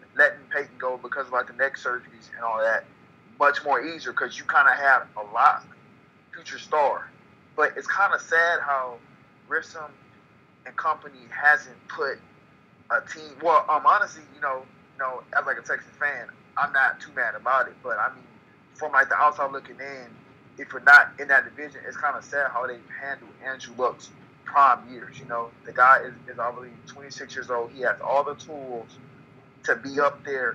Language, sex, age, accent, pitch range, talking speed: English, male, 20-39, American, 125-145 Hz, 205 wpm